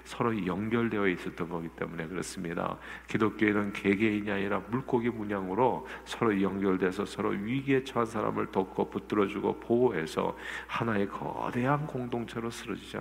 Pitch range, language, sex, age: 95-130 Hz, Korean, male, 50-69